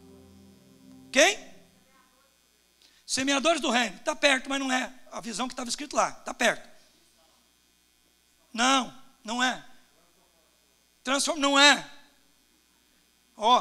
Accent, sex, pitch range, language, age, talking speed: Brazilian, male, 255-315 Hz, Portuguese, 60-79, 105 wpm